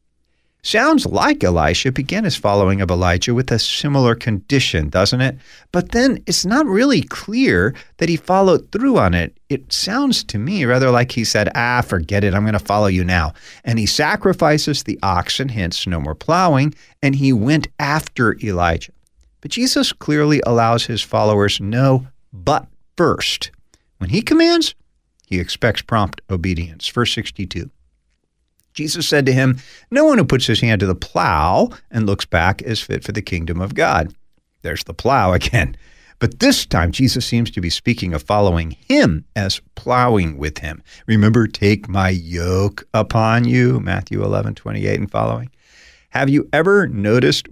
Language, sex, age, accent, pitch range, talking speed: English, male, 40-59, American, 90-130 Hz, 170 wpm